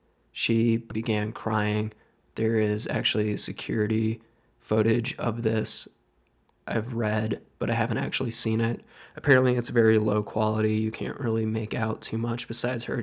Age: 20-39